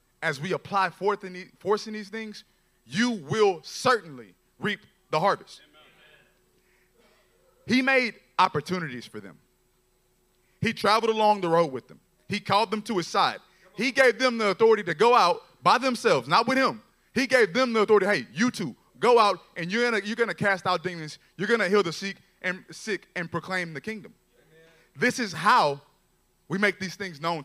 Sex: male